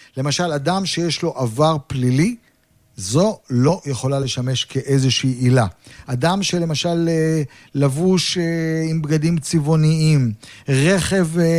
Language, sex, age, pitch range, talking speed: Hebrew, male, 50-69, 140-180 Hz, 100 wpm